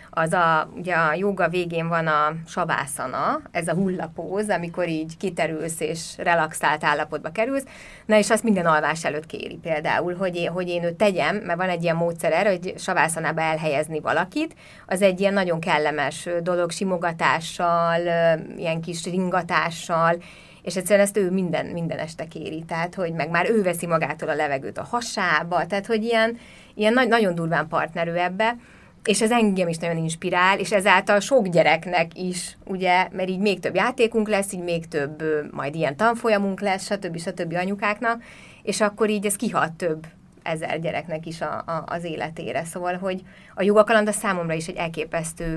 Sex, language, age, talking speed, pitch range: female, Hungarian, 30-49, 175 wpm, 165-200 Hz